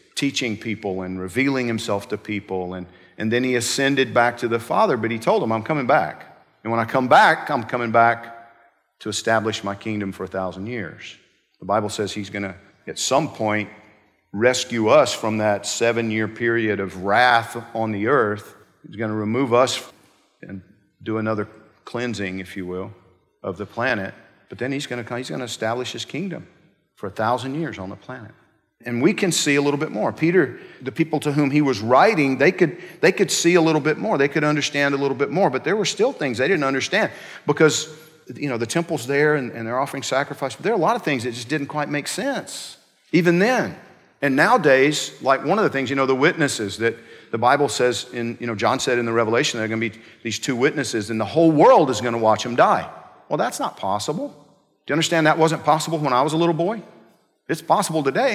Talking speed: 220 wpm